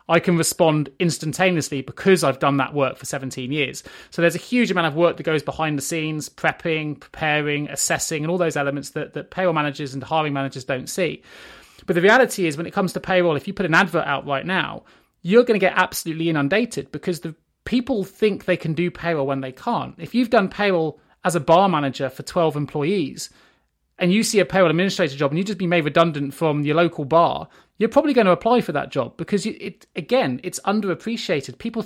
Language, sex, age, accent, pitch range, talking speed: English, male, 30-49, British, 145-190 Hz, 220 wpm